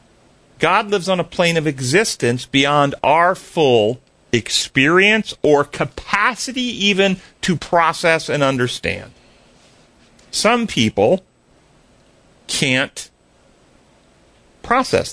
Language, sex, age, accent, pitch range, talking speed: English, male, 40-59, American, 135-180 Hz, 85 wpm